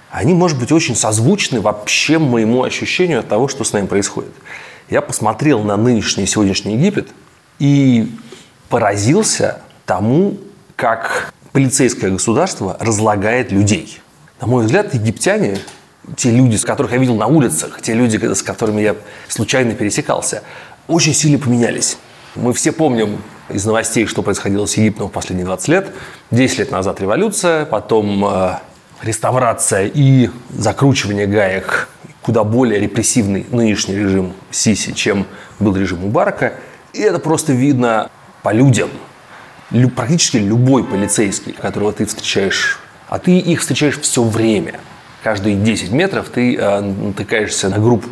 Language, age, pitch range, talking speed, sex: Russian, 30-49, 105-135 Hz, 135 wpm, male